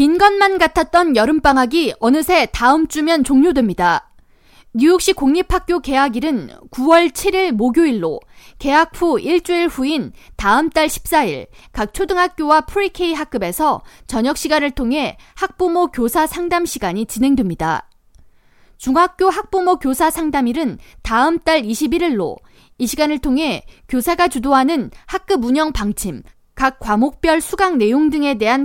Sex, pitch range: female, 245-340 Hz